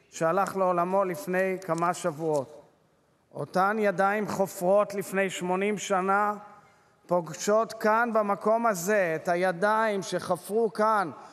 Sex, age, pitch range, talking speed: male, 30-49, 185-220 Hz, 100 wpm